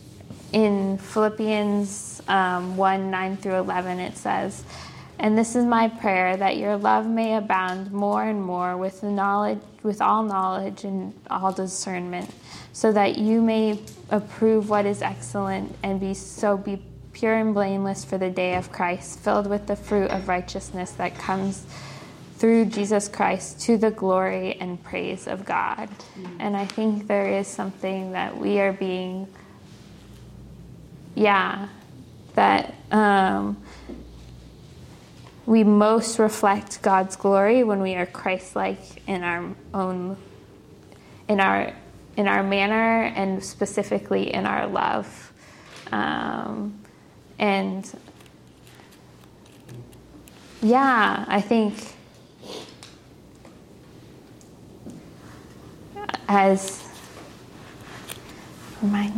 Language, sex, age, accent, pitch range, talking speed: English, female, 10-29, American, 185-210 Hz, 110 wpm